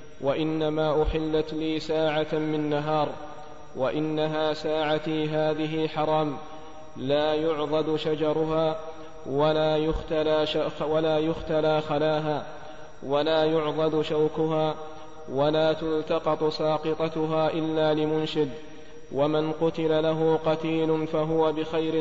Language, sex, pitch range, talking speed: Arabic, male, 155-160 Hz, 90 wpm